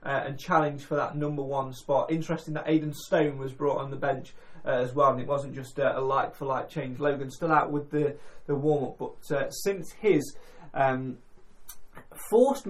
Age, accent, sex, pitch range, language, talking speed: 20-39, British, male, 135-160 Hz, English, 210 wpm